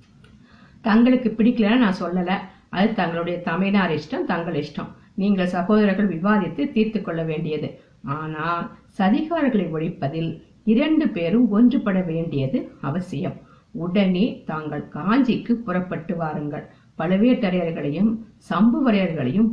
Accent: native